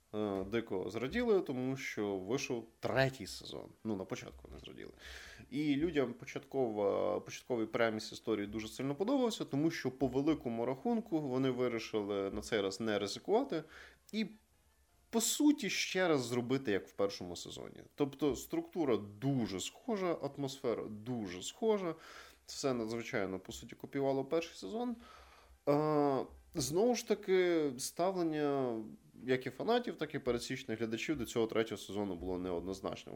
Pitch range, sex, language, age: 110-145 Hz, male, Ukrainian, 20-39